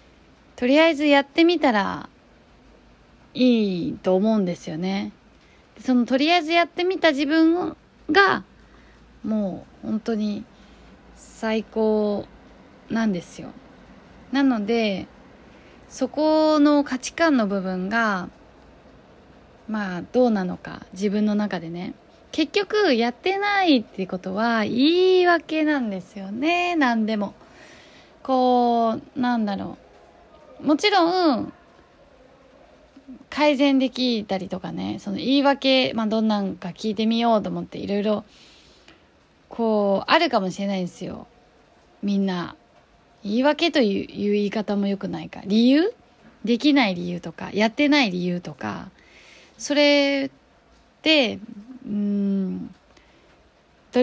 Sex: female